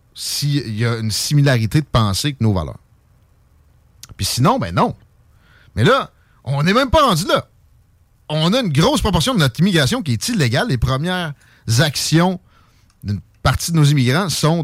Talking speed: 170 wpm